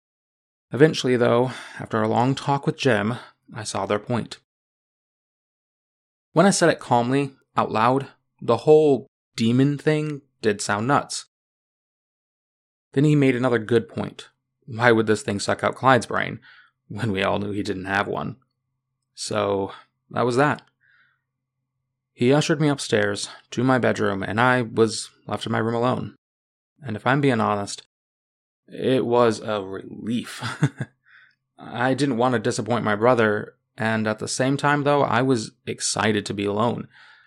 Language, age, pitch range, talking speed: English, 20-39, 105-130 Hz, 155 wpm